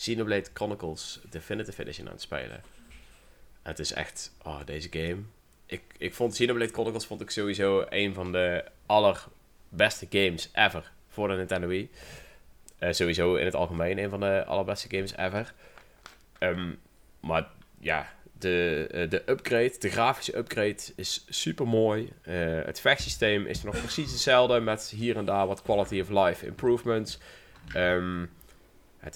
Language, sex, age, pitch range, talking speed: Dutch, male, 20-39, 90-110 Hz, 150 wpm